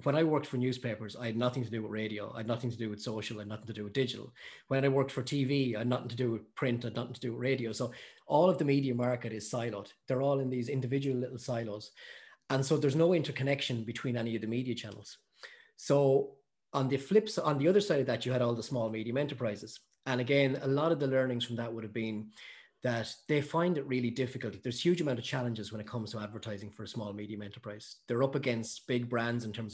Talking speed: 260 wpm